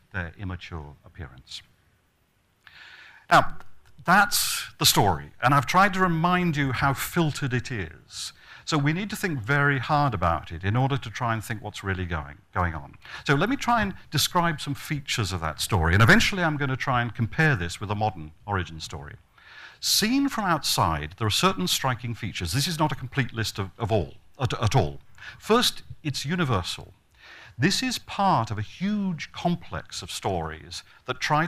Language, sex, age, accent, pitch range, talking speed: English, male, 50-69, British, 95-150 Hz, 185 wpm